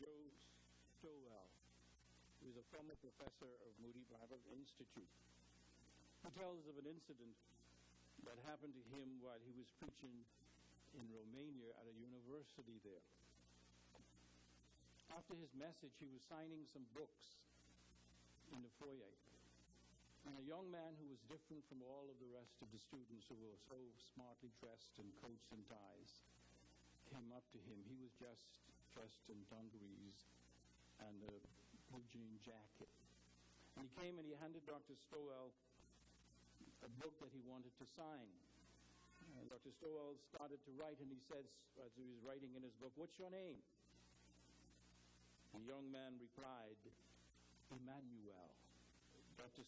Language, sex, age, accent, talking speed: English, male, 60-79, American, 145 wpm